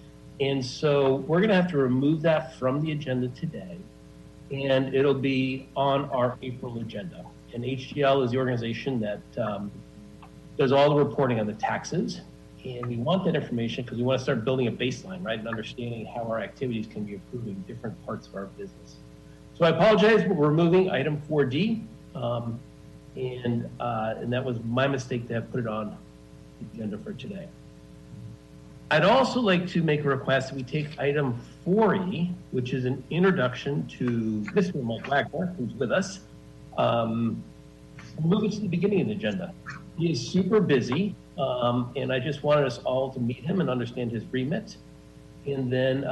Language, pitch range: English, 120-150 Hz